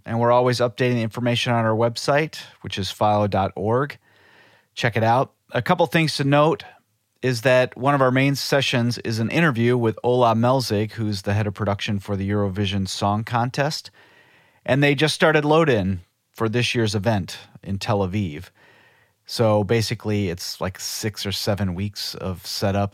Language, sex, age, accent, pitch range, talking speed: English, male, 30-49, American, 100-125 Hz, 170 wpm